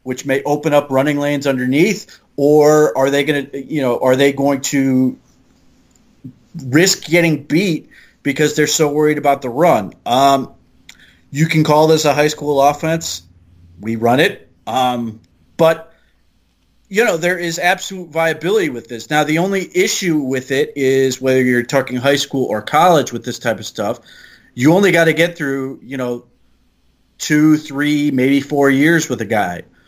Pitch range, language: 125-150 Hz, English